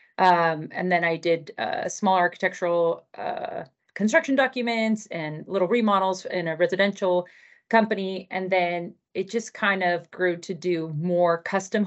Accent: American